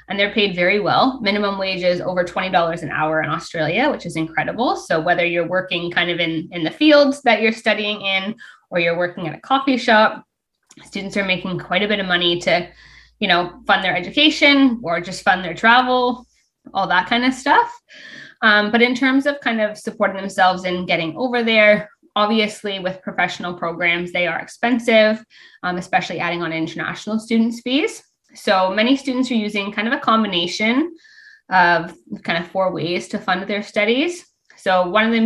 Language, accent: English, American